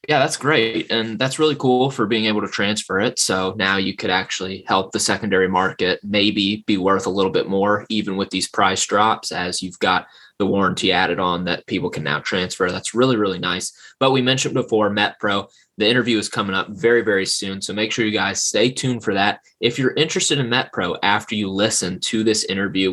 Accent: American